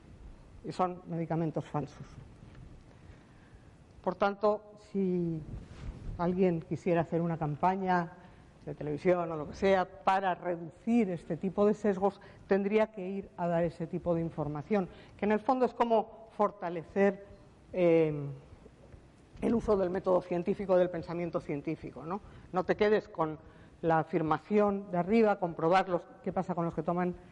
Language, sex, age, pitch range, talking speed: Spanish, female, 50-69, 170-205 Hz, 145 wpm